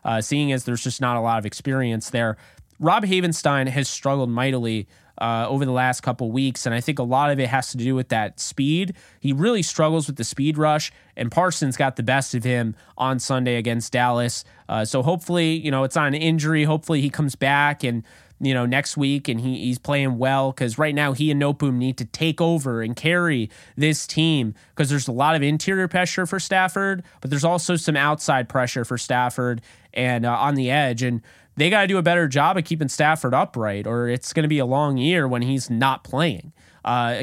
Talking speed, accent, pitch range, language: 220 wpm, American, 120-155 Hz, English